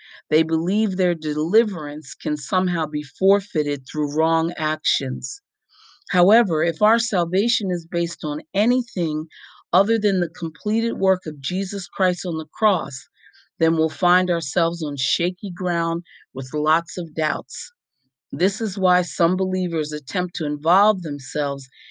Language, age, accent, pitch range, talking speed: English, 40-59, American, 150-185 Hz, 135 wpm